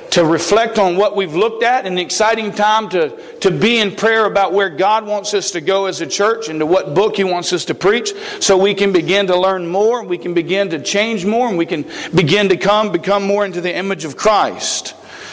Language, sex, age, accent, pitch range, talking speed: English, male, 50-69, American, 180-215 Hz, 245 wpm